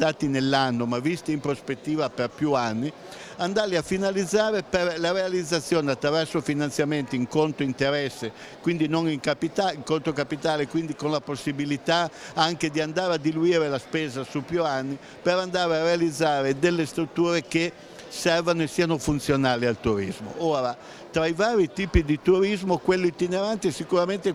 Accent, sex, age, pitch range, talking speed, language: native, male, 60-79, 145-180 Hz, 160 wpm, Italian